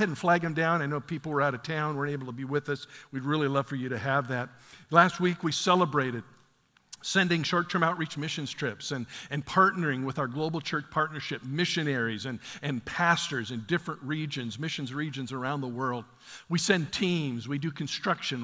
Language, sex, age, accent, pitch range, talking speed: English, male, 50-69, American, 130-160 Hz, 195 wpm